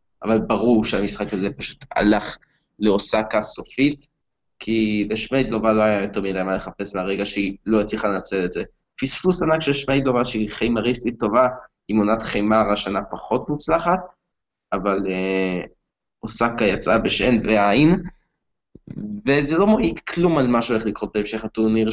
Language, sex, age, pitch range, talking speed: Hebrew, male, 20-39, 105-140 Hz, 145 wpm